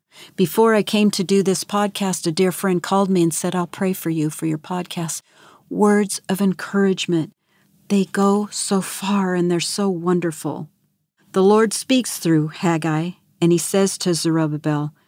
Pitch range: 155-185 Hz